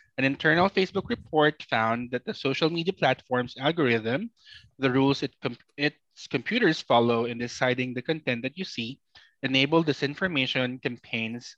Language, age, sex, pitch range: Filipino, 20-39, male, 120-165 Hz